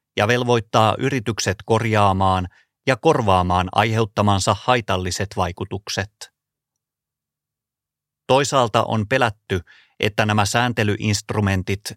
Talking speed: 75 wpm